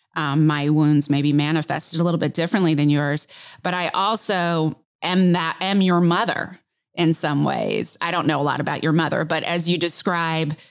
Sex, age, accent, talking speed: female, 30-49, American, 190 wpm